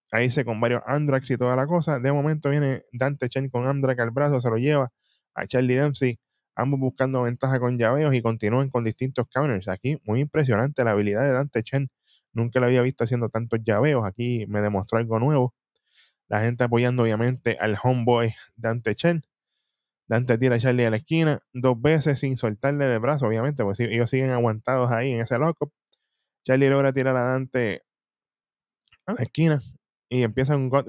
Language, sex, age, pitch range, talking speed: Spanish, male, 10-29, 120-140 Hz, 185 wpm